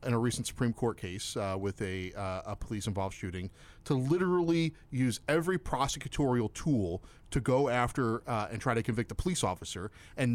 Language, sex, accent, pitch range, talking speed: English, male, American, 100-130 Hz, 180 wpm